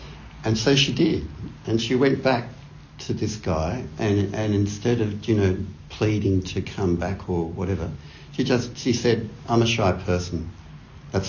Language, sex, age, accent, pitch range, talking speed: English, male, 60-79, Australian, 85-110 Hz, 170 wpm